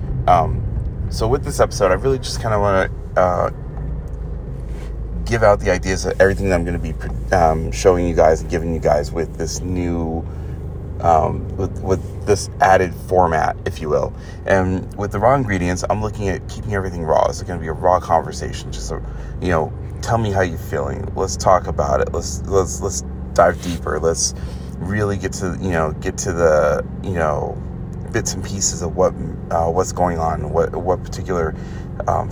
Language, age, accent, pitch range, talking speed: English, 30-49, American, 80-100 Hz, 195 wpm